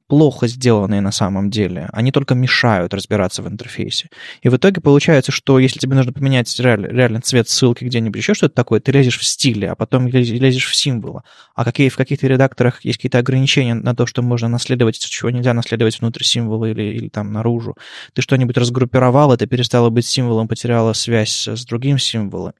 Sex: male